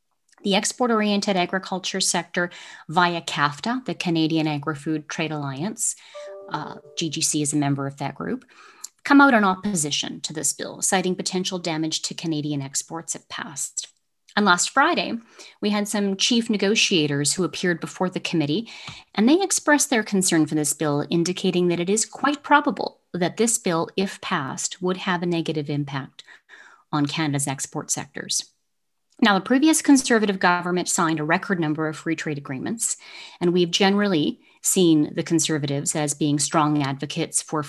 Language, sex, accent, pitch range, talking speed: English, female, American, 155-205 Hz, 160 wpm